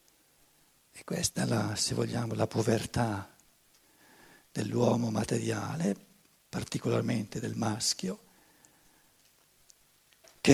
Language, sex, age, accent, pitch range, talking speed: Italian, male, 60-79, native, 120-170 Hz, 80 wpm